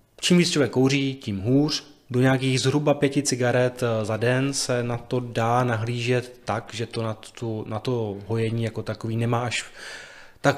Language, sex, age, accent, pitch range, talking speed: Czech, male, 20-39, native, 110-130 Hz, 175 wpm